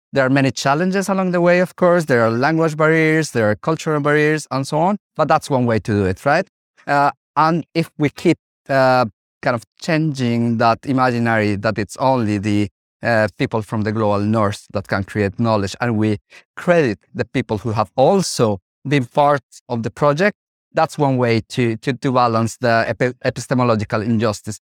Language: English